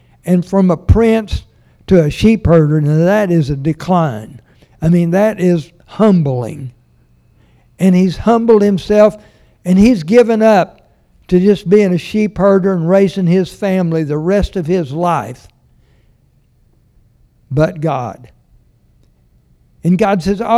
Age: 60-79